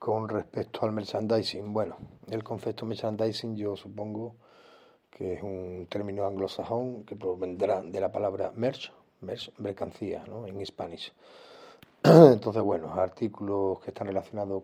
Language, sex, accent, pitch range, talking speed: Spanish, male, Spanish, 95-110 Hz, 130 wpm